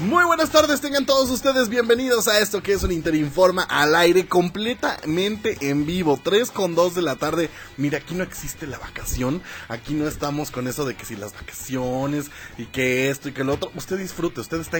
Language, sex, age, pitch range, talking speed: Spanish, male, 20-39, 140-190 Hz, 205 wpm